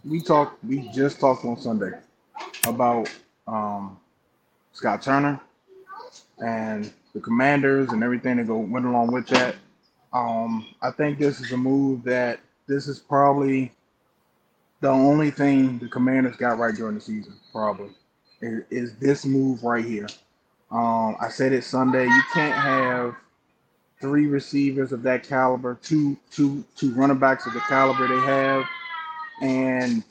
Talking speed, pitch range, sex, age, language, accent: 150 wpm, 125-150 Hz, male, 20-39, English, American